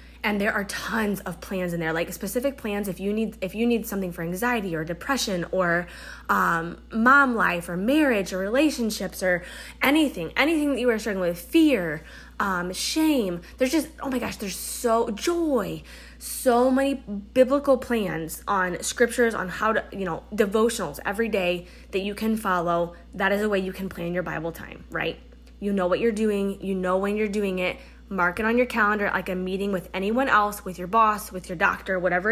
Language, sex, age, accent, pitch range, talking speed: English, female, 20-39, American, 180-240 Hz, 200 wpm